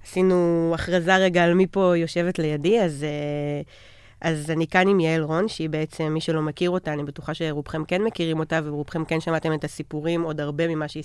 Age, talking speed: 30-49, 195 wpm